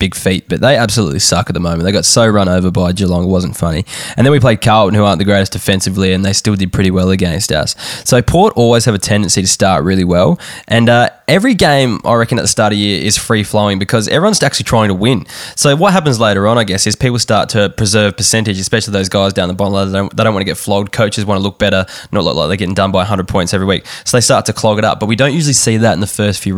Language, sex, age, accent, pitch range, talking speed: English, male, 10-29, Australian, 95-115 Hz, 285 wpm